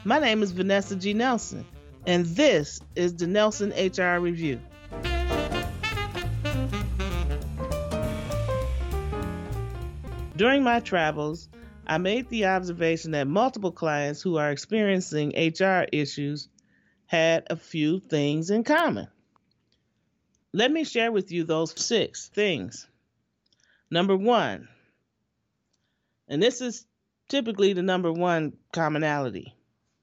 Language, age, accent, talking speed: English, 40-59, American, 105 wpm